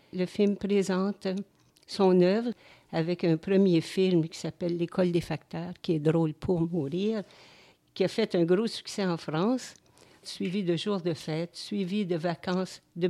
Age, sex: 60-79, female